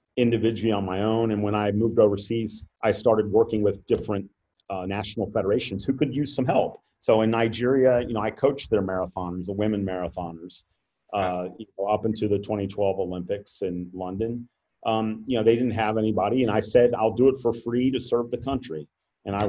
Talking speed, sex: 195 wpm, male